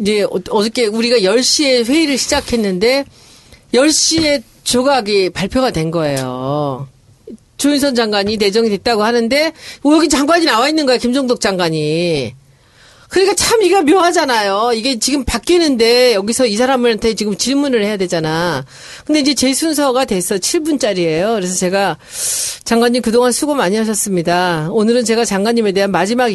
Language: Korean